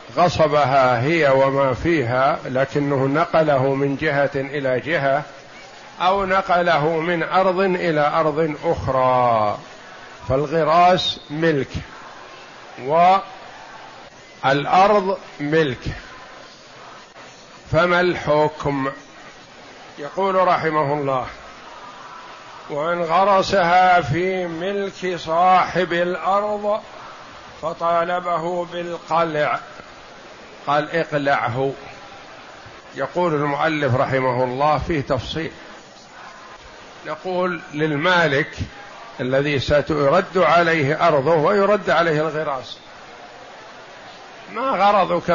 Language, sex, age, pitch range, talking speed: Arabic, male, 50-69, 140-175 Hz, 70 wpm